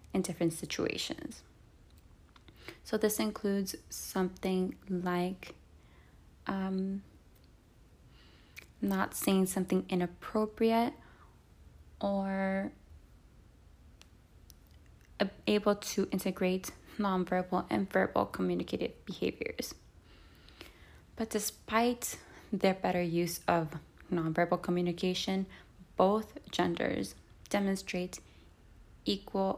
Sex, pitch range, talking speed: female, 170-200 Hz, 70 wpm